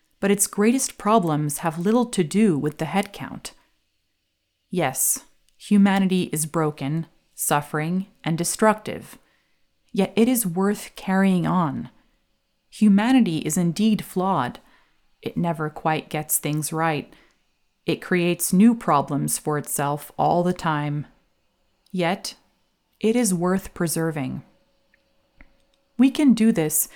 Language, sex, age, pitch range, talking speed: English, female, 30-49, 155-200 Hz, 115 wpm